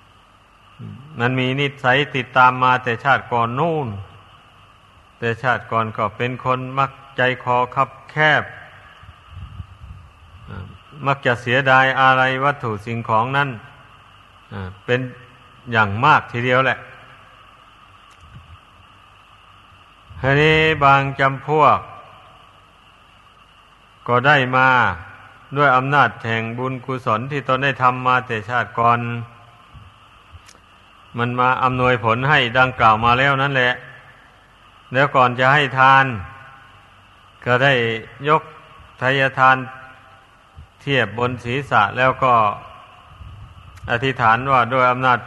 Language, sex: Thai, male